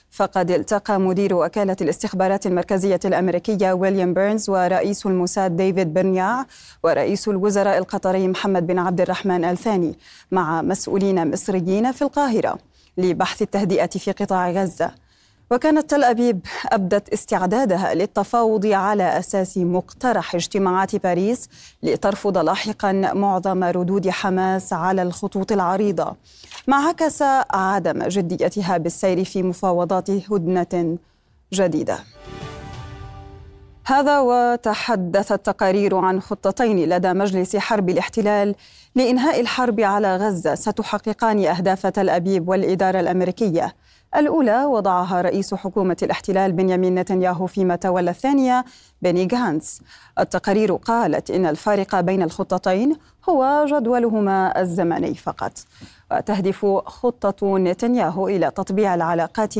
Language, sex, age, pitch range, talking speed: Arabic, female, 20-39, 180-210 Hz, 110 wpm